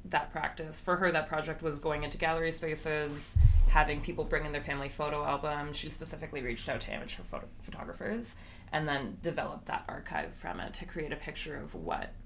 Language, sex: English, female